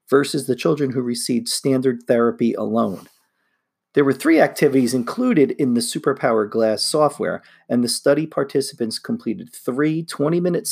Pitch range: 120-150 Hz